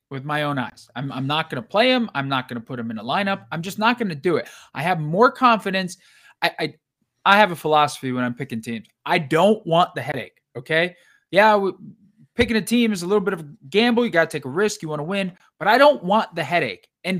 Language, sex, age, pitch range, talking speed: English, male, 20-39, 145-215 Hz, 260 wpm